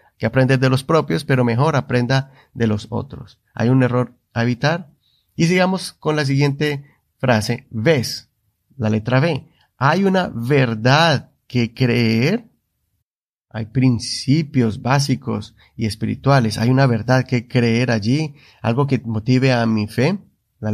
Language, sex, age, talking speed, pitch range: Spanish, male, 30-49, 140 wpm, 110-135 Hz